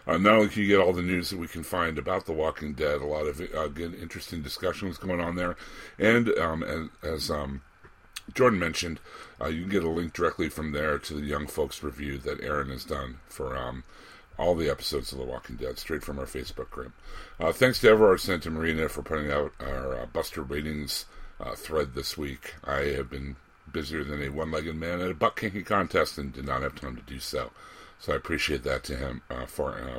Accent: American